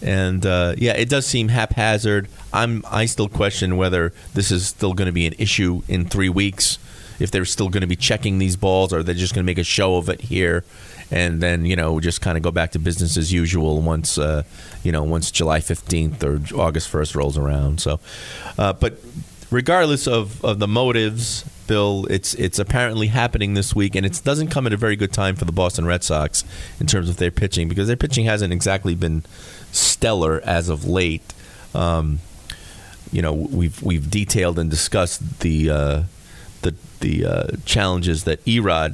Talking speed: 195 wpm